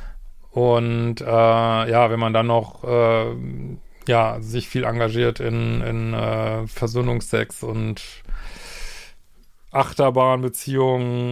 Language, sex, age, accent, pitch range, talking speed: German, male, 40-59, German, 115-130 Hz, 95 wpm